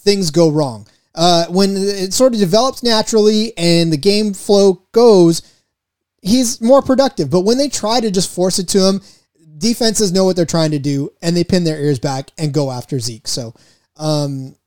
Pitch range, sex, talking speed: 155-220 Hz, male, 190 wpm